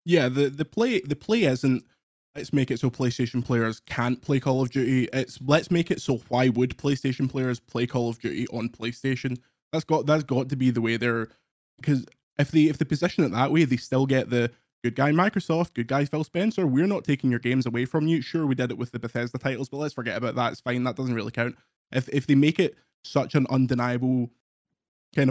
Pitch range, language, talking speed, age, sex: 120-150 Hz, English, 230 wpm, 20-39, male